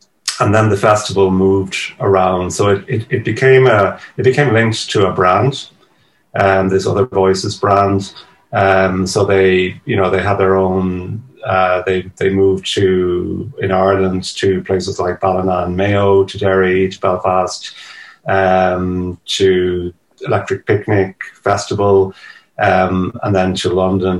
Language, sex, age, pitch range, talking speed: English, male, 30-49, 90-100 Hz, 150 wpm